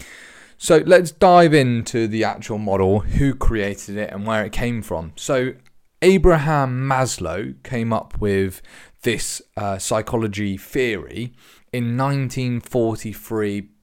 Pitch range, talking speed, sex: 100-130 Hz, 115 wpm, male